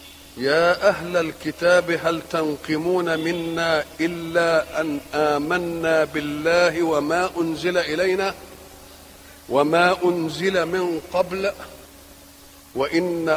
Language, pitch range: Arabic, 155-190 Hz